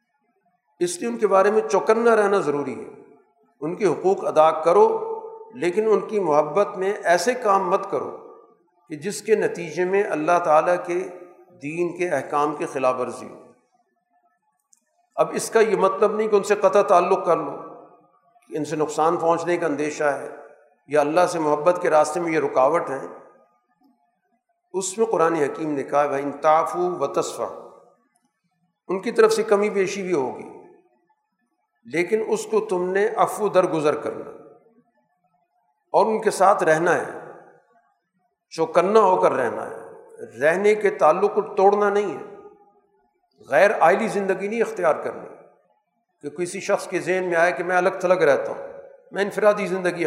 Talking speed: 160 wpm